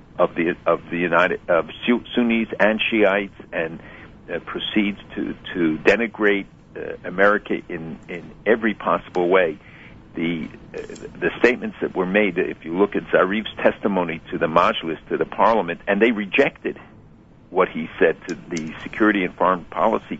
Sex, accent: male, American